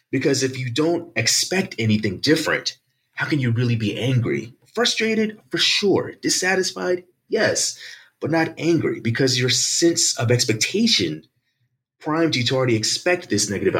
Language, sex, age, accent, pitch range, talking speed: English, male, 30-49, American, 105-155 Hz, 145 wpm